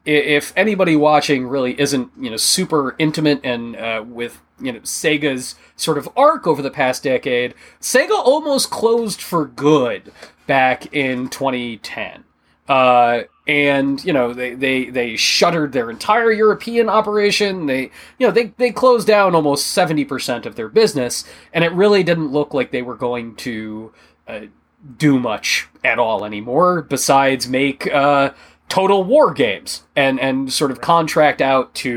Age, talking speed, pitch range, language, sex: 30-49, 155 wpm, 130-195 Hz, English, male